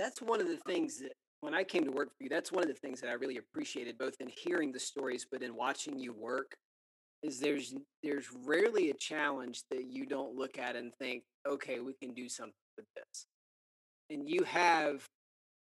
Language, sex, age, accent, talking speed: English, male, 30-49, American, 210 wpm